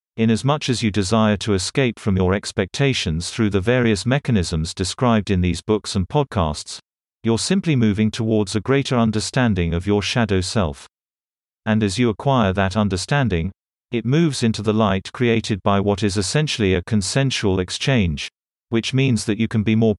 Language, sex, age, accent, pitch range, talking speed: English, male, 40-59, British, 95-120 Hz, 175 wpm